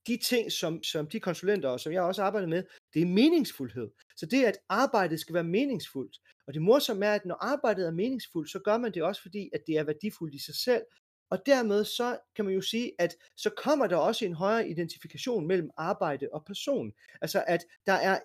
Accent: native